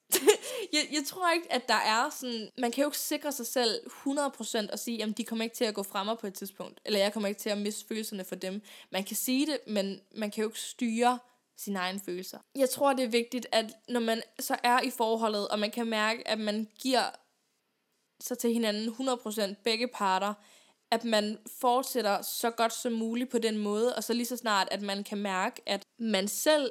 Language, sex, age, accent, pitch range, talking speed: Danish, female, 10-29, native, 210-255 Hz, 225 wpm